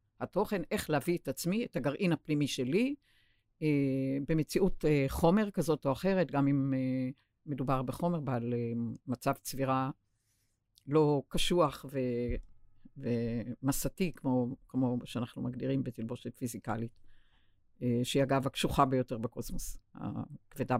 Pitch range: 120-165 Hz